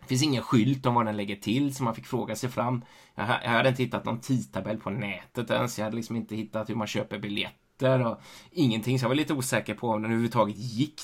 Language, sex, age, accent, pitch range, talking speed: Swedish, male, 20-39, native, 110-130 Hz, 245 wpm